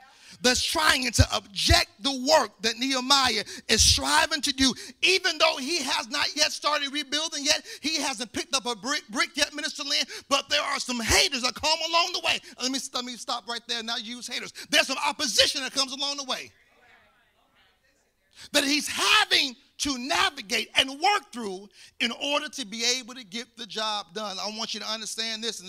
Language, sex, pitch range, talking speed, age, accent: English, male, 245-310 Hz, 200 wpm, 40-59, American